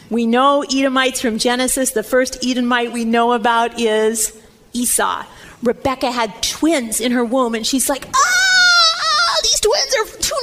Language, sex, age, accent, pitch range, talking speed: English, female, 40-59, American, 220-280 Hz, 155 wpm